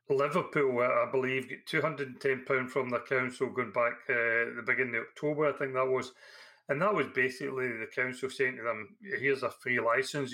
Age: 40-59